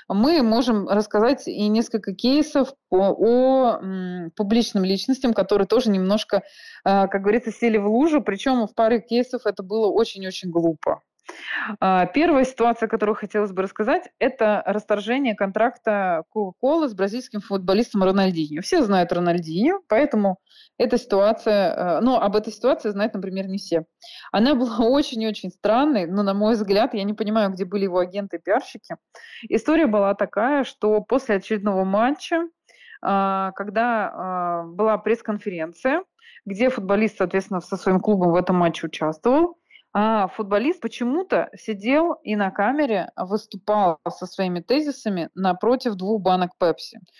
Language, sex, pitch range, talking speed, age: Russian, female, 195-245 Hz, 135 wpm, 20-39